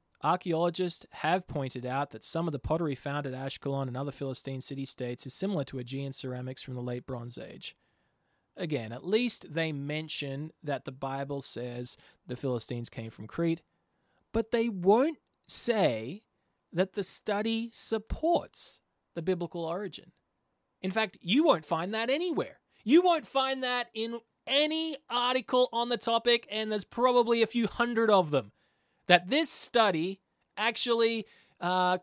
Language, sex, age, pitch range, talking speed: English, male, 20-39, 135-225 Hz, 150 wpm